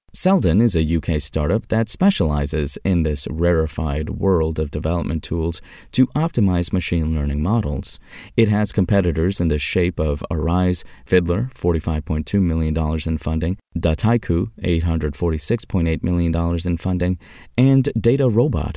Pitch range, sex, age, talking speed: 80-110 Hz, male, 30-49, 125 wpm